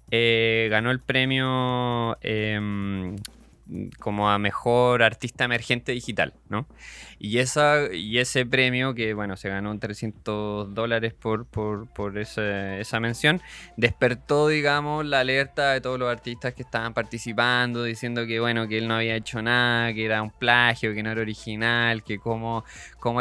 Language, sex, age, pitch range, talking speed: Spanish, male, 20-39, 110-125 Hz, 155 wpm